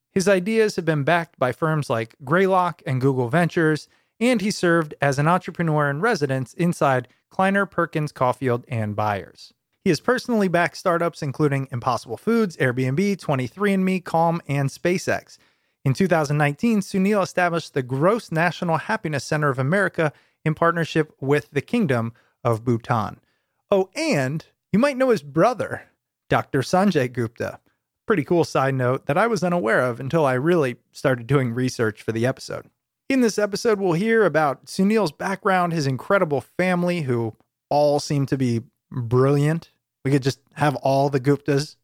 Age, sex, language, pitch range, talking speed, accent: 30-49, male, English, 135-185 Hz, 155 wpm, American